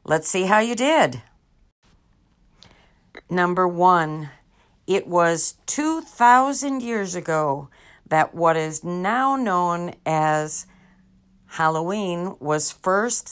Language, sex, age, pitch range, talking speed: English, female, 50-69, 155-230 Hz, 95 wpm